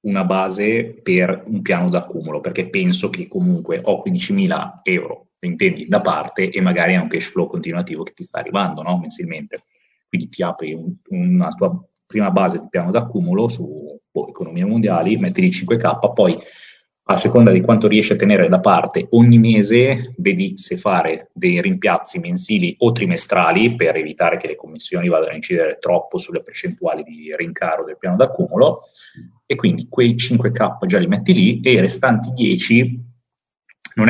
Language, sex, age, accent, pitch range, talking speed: Italian, male, 30-49, native, 110-185 Hz, 170 wpm